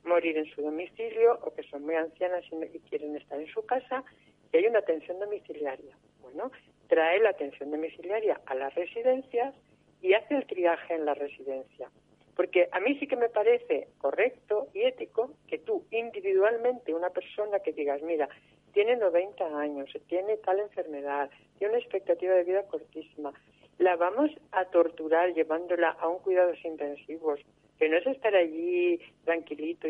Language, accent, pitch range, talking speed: Spanish, Spanish, 160-230 Hz, 160 wpm